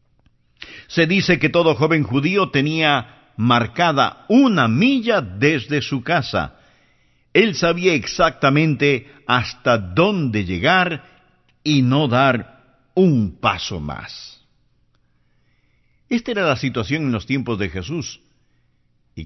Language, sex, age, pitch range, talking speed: English, male, 50-69, 110-150 Hz, 110 wpm